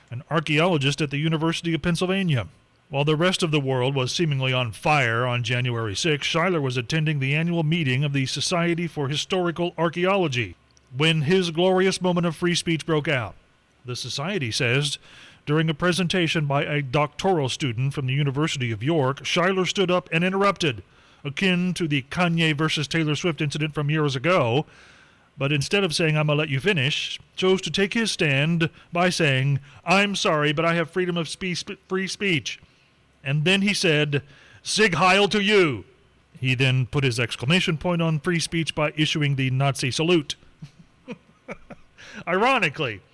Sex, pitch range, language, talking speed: male, 135-180 Hz, English, 170 wpm